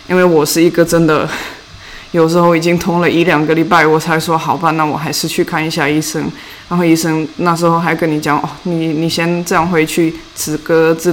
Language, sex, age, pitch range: Chinese, female, 20-39, 155-175 Hz